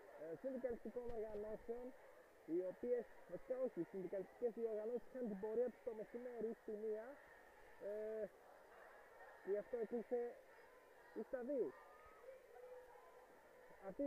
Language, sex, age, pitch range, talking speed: Greek, male, 20-39, 215-325 Hz, 105 wpm